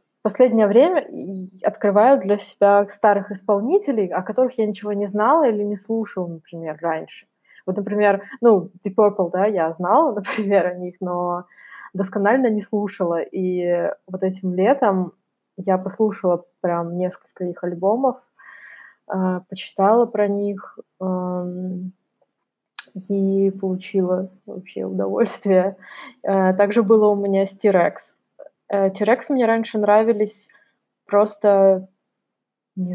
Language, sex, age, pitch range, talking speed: Russian, female, 20-39, 185-215 Hz, 110 wpm